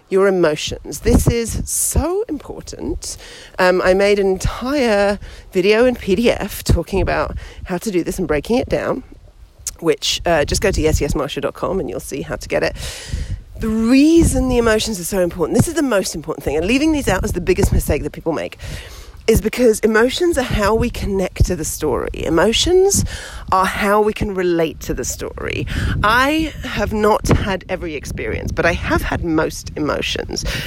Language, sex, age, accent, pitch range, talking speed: English, female, 40-59, British, 170-235 Hz, 180 wpm